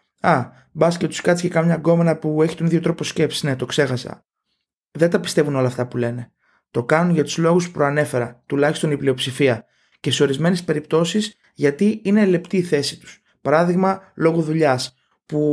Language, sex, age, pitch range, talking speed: Greek, male, 20-39, 145-195 Hz, 185 wpm